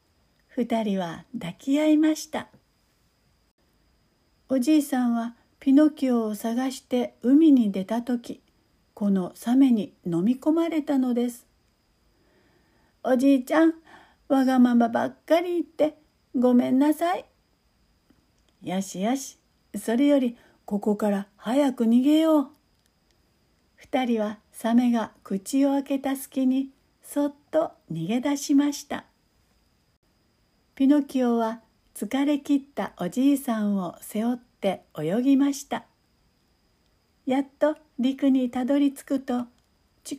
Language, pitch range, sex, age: Japanese, 225-285 Hz, female, 60-79